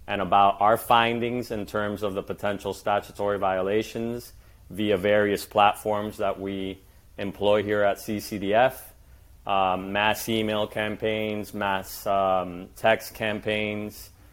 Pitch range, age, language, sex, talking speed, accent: 95-110 Hz, 30-49, English, male, 115 wpm, American